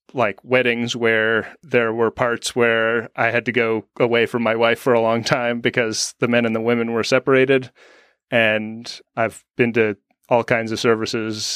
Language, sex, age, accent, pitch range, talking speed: English, male, 30-49, American, 110-125 Hz, 180 wpm